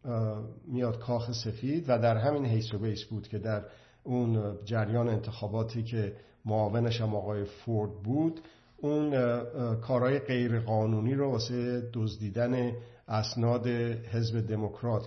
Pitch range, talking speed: 110-130 Hz, 120 wpm